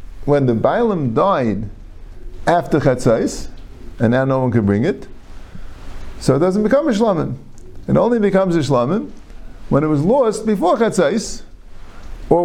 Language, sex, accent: English, male, American